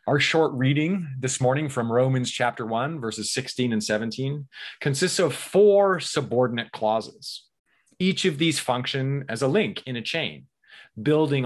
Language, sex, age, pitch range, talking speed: English, male, 30-49, 105-140 Hz, 150 wpm